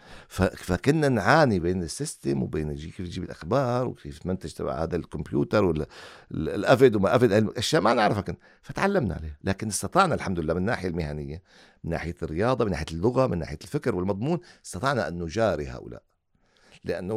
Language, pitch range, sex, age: Arabic, 85-125 Hz, male, 50-69